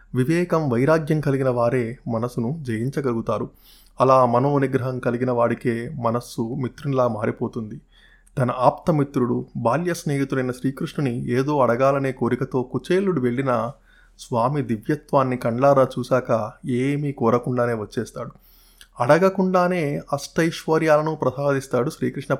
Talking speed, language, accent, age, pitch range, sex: 95 wpm, Telugu, native, 20-39, 125-150 Hz, male